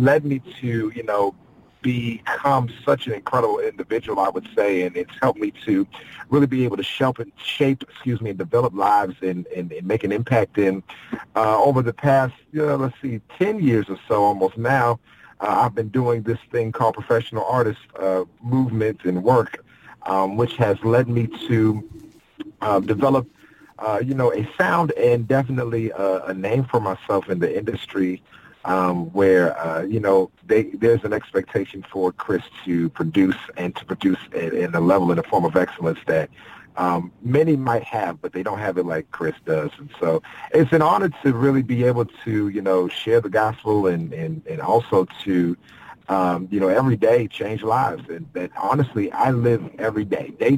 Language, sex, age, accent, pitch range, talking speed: English, male, 40-59, American, 95-130 Hz, 185 wpm